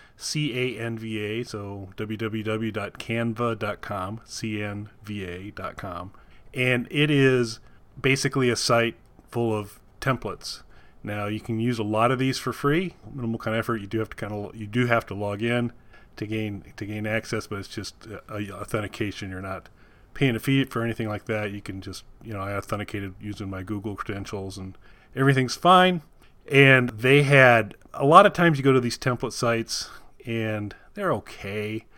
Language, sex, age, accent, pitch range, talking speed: English, male, 30-49, American, 100-125 Hz, 165 wpm